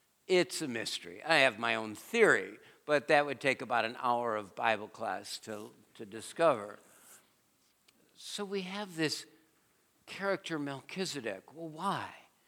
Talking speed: 140 wpm